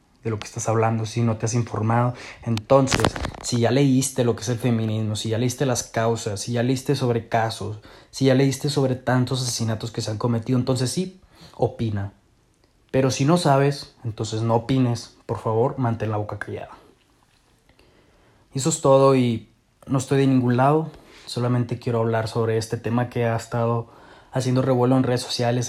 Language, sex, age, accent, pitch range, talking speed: Spanish, male, 20-39, Mexican, 115-130 Hz, 180 wpm